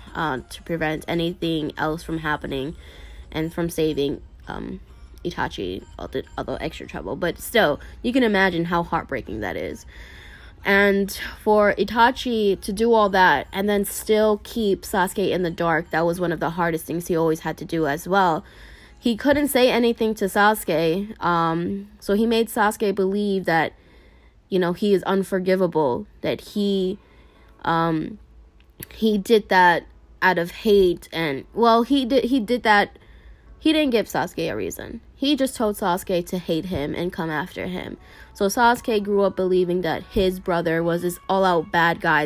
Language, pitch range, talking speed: English, 165-205 Hz, 170 wpm